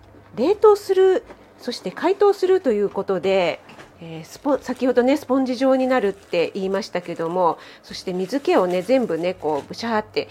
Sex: female